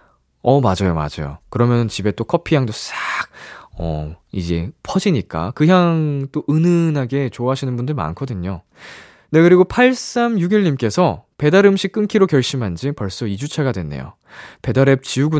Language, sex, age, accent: Korean, male, 20-39, native